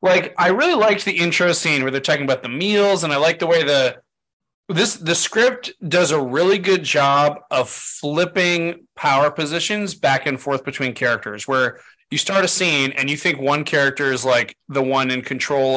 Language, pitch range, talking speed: English, 130-170 Hz, 200 wpm